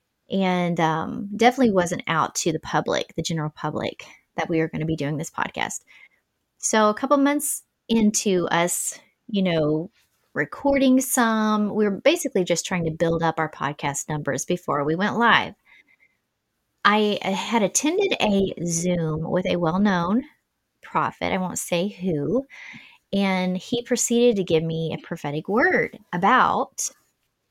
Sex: female